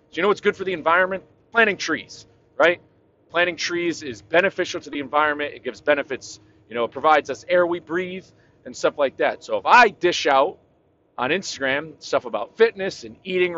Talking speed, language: 200 wpm, English